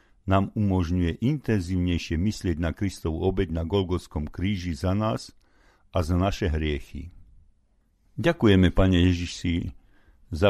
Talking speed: 115 wpm